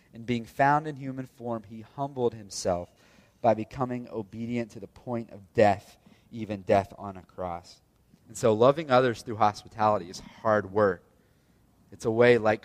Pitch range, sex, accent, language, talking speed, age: 95-120 Hz, male, American, English, 165 wpm, 30-49